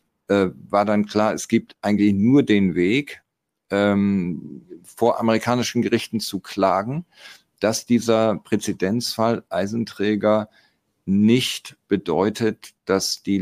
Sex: male